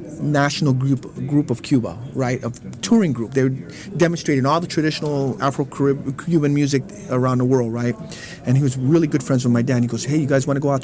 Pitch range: 130-165 Hz